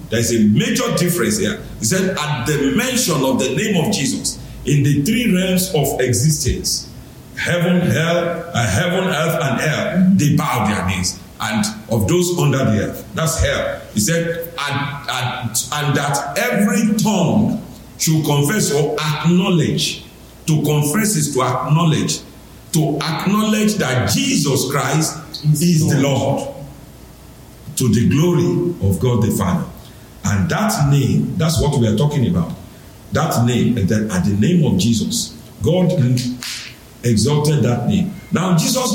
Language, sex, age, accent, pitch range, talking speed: English, male, 50-69, Nigerian, 125-175 Hz, 150 wpm